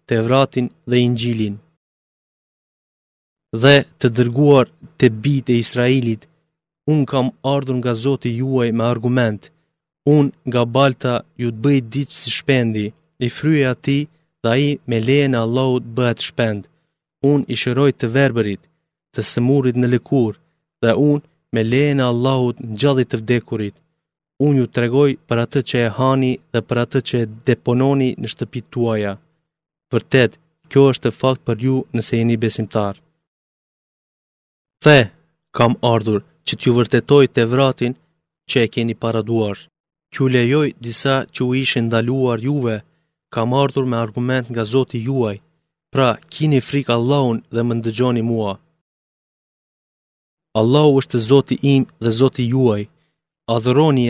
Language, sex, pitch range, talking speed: Greek, male, 115-140 Hz, 135 wpm